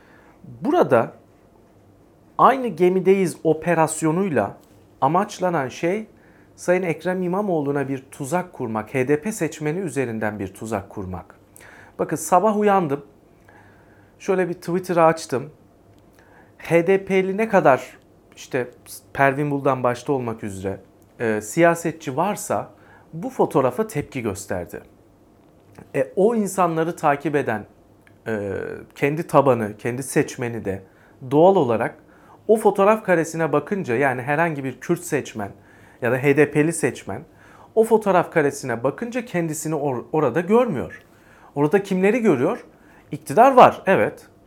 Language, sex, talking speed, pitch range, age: Turkish, male, 105 wpm, 120-185 Hz, 40-59